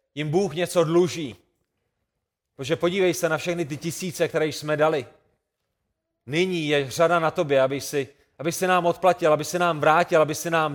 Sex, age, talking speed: male, 30-49, 175 wpm